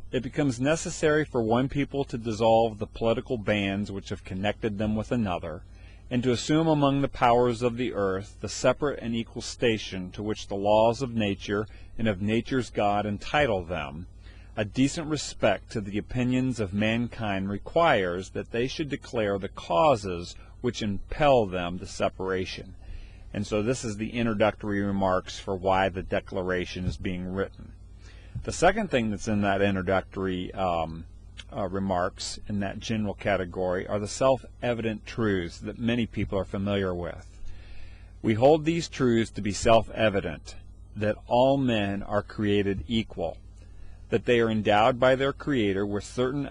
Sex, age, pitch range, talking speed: male, 40-59, 95-115 Hz, 160 wpm